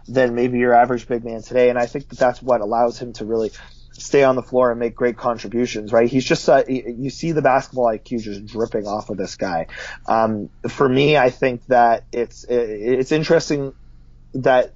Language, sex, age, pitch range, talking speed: English, male, 30-49, 115-130 Hz, 205 wpm